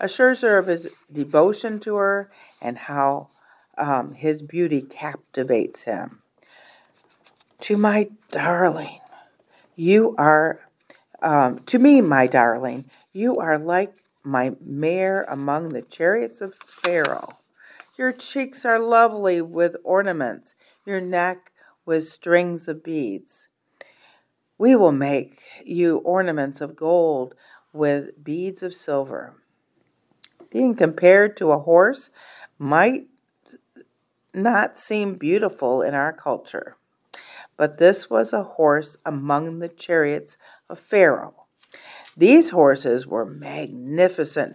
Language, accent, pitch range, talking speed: English, American, 145-195 Hz, 110 wpm